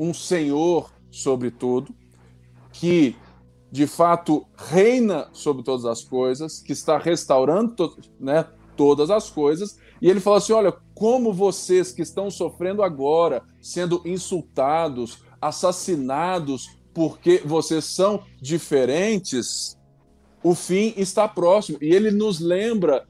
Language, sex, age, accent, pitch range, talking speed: Portuguese, male, 20-39, Brazilian, 160-215 Hz, 120 wpm